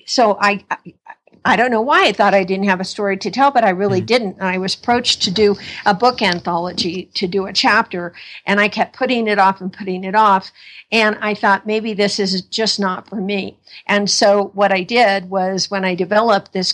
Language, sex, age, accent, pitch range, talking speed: English, female, 60-79, American, 190-220 Hz, 220 wpm